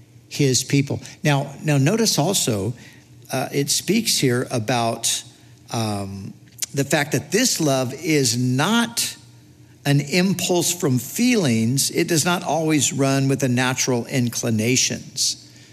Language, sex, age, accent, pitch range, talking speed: English, male, 60-79, American, 125-175 Hz, 120 wpm